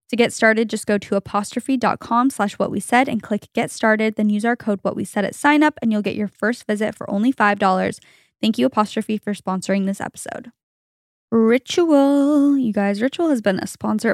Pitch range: 200-235 Hz